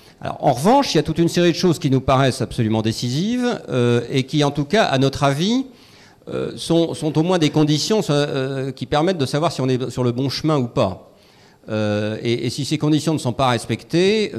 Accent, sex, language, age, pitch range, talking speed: French, male, French, 40-59, 110-155 Hz, 235 wpm